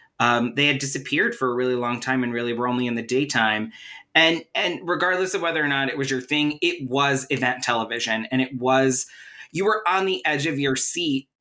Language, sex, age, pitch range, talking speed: English, male, 20-39, 120-150 Hz, 220 wpm